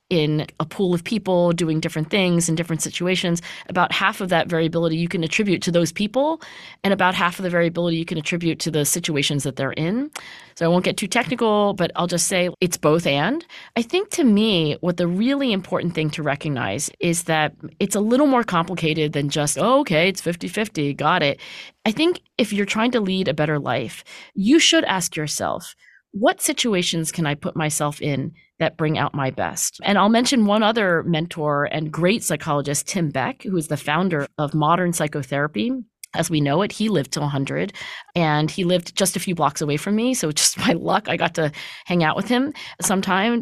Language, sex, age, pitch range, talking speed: English, female, 30-49, 155-205 Hz, 205 wpm